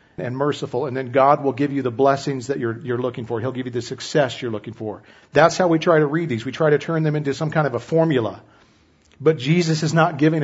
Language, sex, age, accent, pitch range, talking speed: English, male, 40-59, American, 125-160 Hz, 265 wpm